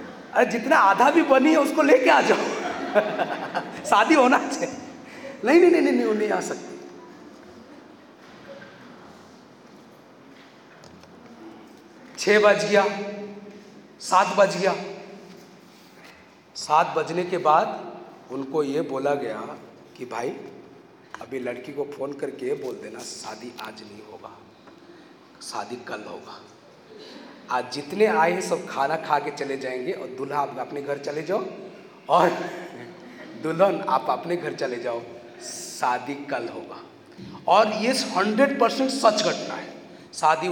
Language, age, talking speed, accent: Hindi, 40-59, 125 wpm, native